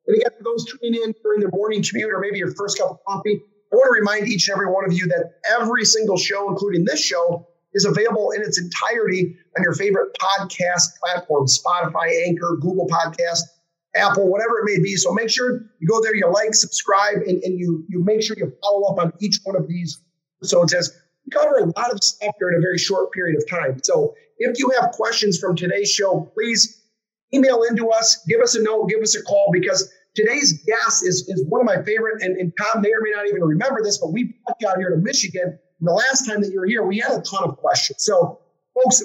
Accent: American